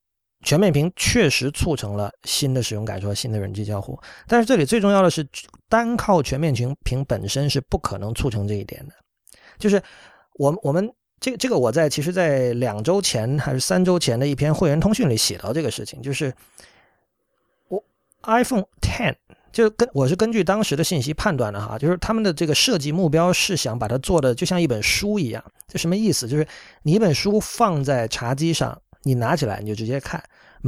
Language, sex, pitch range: Chinese, male, 125-185 Hz